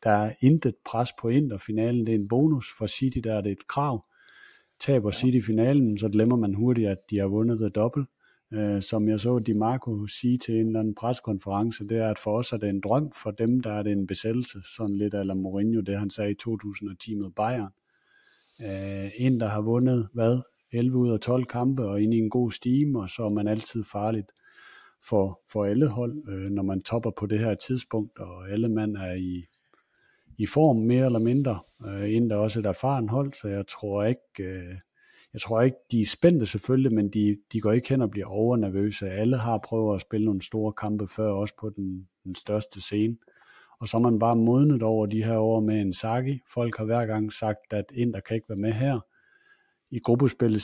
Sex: male